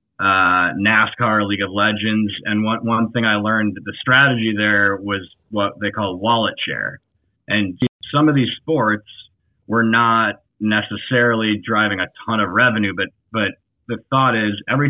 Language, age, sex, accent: English, 20-39, male, American